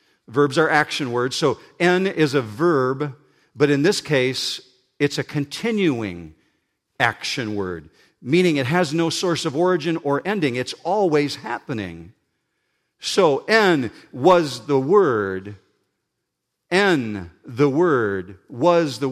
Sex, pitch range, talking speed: male, 130-165 Hz, 125 wpm